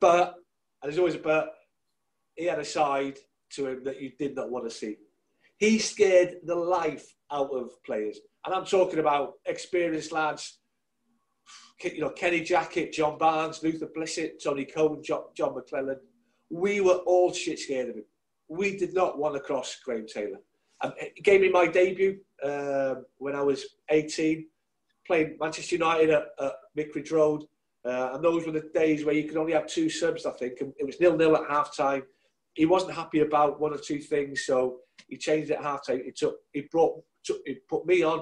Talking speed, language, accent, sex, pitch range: 190 wpm, English, British, male, 145-180 Hz